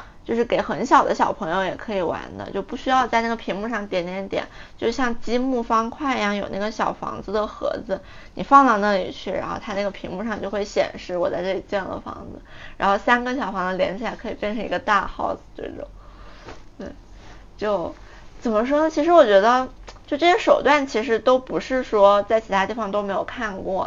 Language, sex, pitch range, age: Chinese, female, 200-265 Hz, 20-39